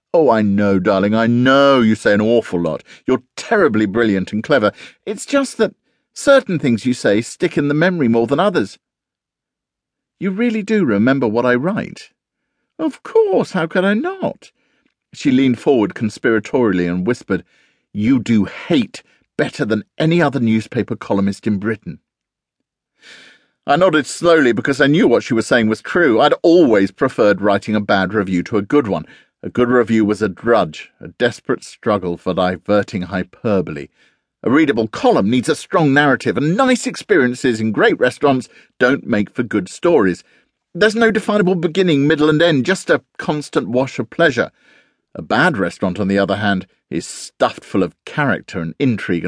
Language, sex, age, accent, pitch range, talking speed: English, male, 50-69, British, 105-175 Hz, 170 wpm